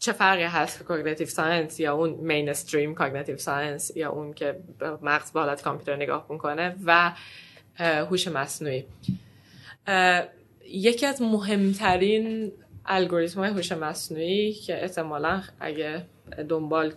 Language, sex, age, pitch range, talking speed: Persian, female, 20-39, 150-180 Hz, 115 wpm